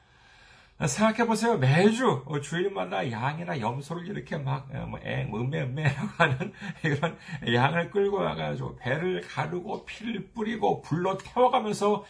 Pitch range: 130-200 Hz